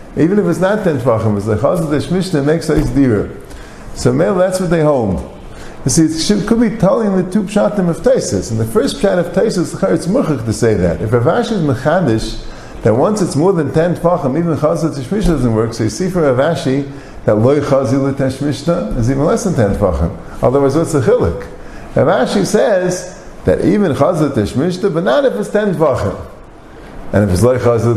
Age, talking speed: 50-69, 200 wpm